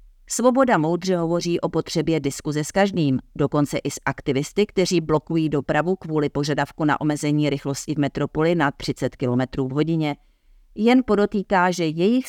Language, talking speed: Czech, 150 wpm